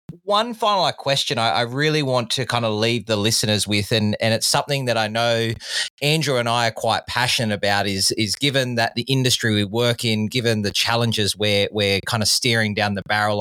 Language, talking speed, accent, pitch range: English, 215 wpm, Australian, 105-125 Hz